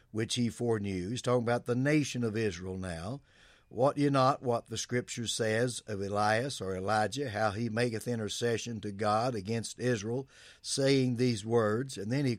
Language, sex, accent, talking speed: English, male, American, 175 wpm